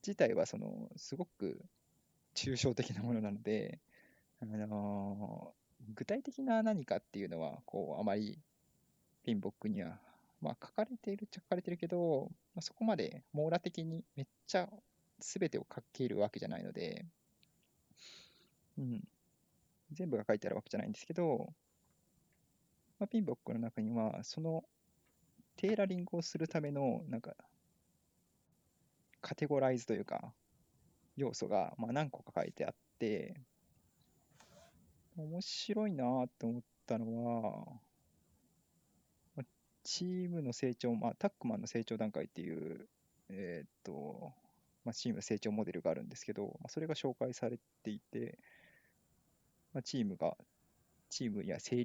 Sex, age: male, 20-39